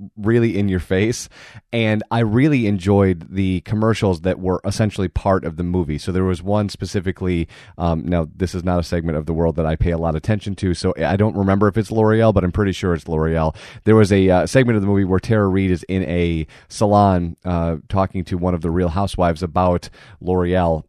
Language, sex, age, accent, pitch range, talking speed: English, male, 30-49, American, 90-105 Hz, 225 wpm